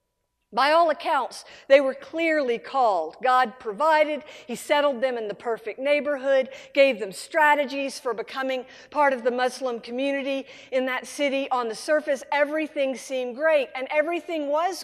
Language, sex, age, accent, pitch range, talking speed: English, female, 50-69, American, 245-290 Hz, 155 wpm